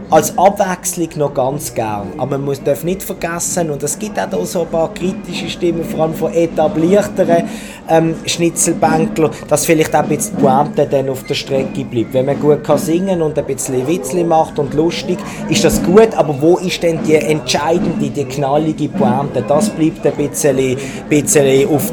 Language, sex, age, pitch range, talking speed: German, male, 20-39, 150-190 Hz, 185 wpm